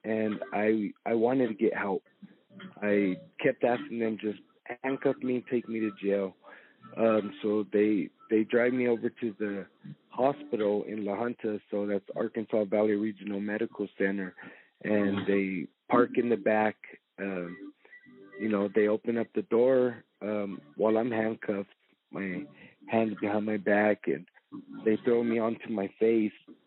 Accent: American